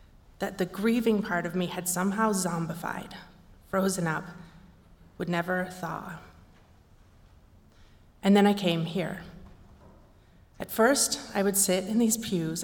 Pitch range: 165-205 Hz